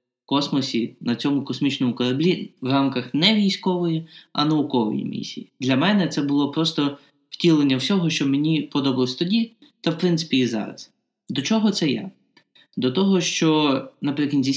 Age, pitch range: 20-39, 130-180 Hz